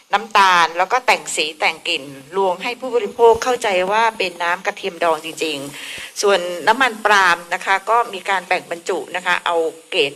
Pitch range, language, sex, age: 180-240 Hz, Thai, female, 60-79